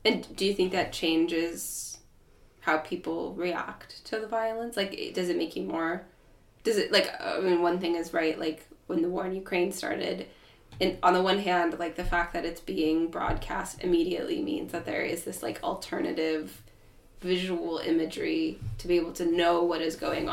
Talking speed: 185 wpm